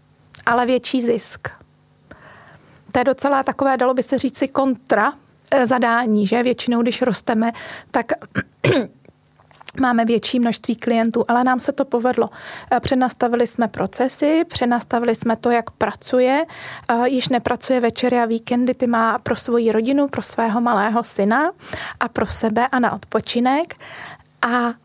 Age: 30-49